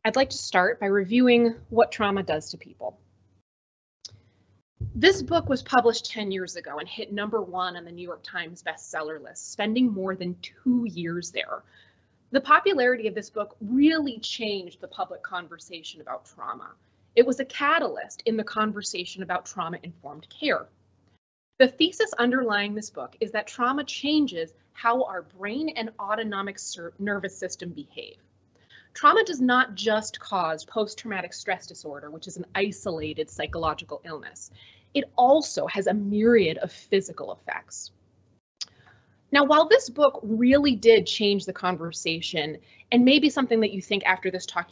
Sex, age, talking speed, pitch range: female, 20-39, 155 wpm, 175-240 Hz